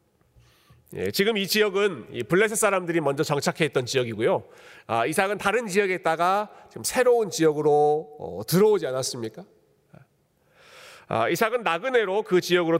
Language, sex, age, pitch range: Korean, male, 40-59, 155-215 Hz